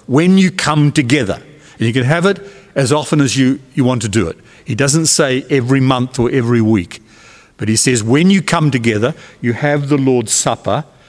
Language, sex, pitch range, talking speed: English, male, 125-170 Hz, 205 wpm